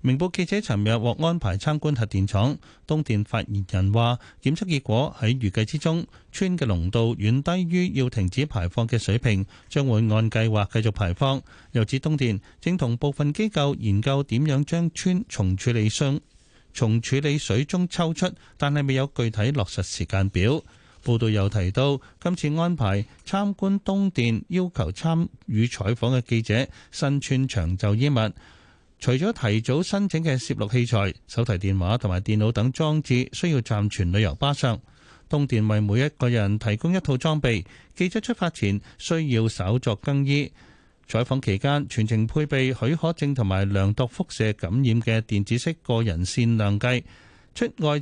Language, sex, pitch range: Chinese, male, 105-150 Hz